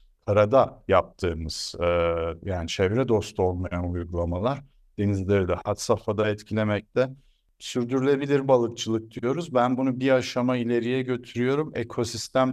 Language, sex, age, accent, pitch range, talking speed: Turkish, male, 60-79, native, 90-120 Hz, 110 wpm